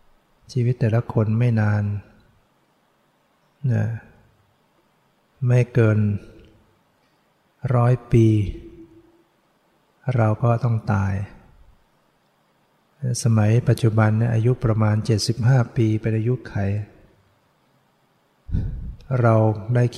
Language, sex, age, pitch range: English, male, 60-79, 110-120 Hz